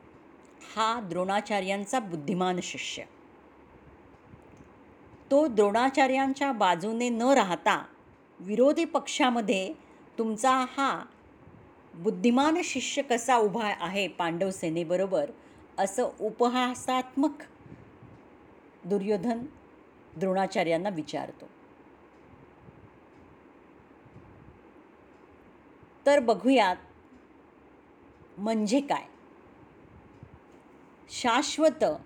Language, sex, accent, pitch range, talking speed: Marathi, female, native, 190-265 Hz, 55 wpm